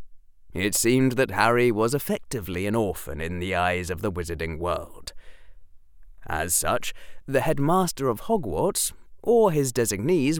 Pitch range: 85-135 Hz